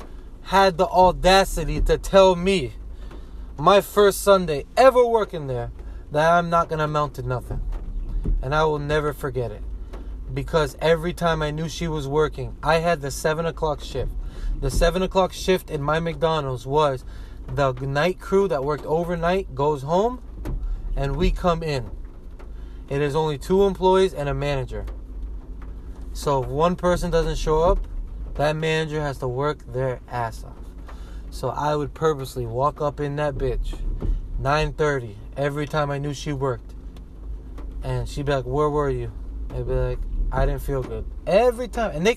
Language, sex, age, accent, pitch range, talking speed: English, male, 20-39, American, 125-170 Hz, 170 wpm